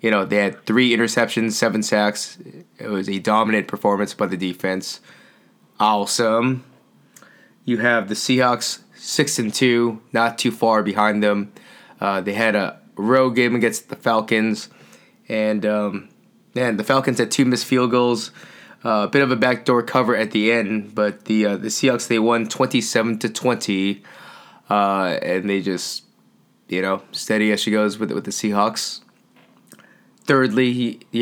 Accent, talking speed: American, 165 wpm